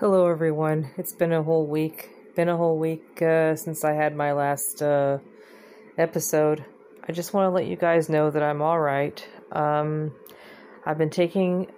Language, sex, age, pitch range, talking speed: English, female, 30-49, 145-165 Hz, 180 wpm